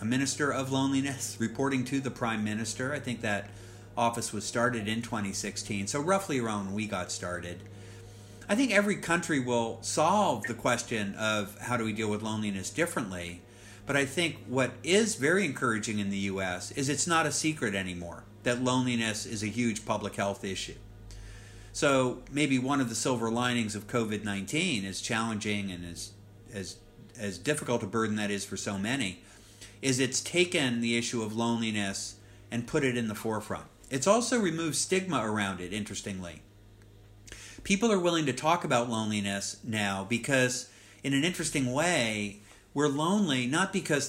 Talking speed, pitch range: 170 wpm, 105-135 Hz